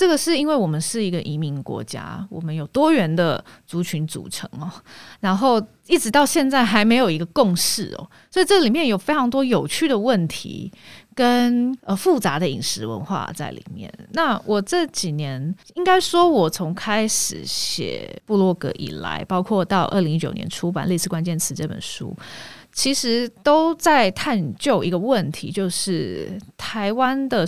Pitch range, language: 170-245 Hz, Chinese